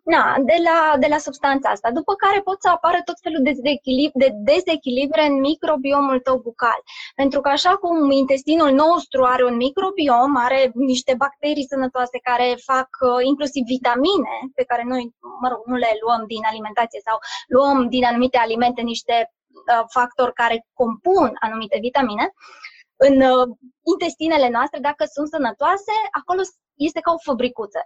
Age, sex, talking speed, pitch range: 20-39, female, 140 wpm, 250-310 Hz